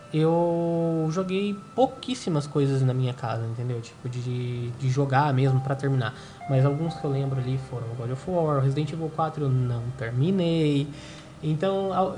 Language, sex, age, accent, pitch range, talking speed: Portuguese, male, 20-39, Brazilian, 135-165 Hz, 160 wpm